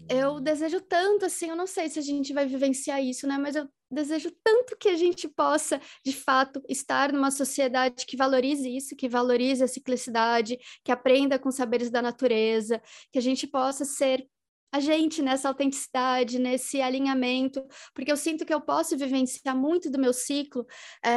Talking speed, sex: 180 wpm, female